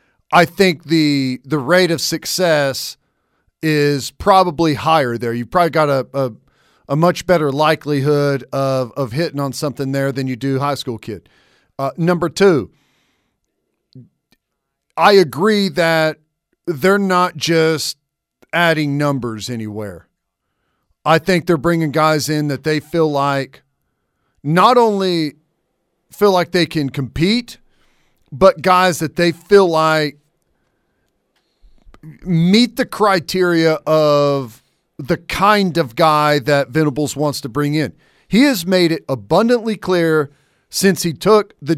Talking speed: 130 wpm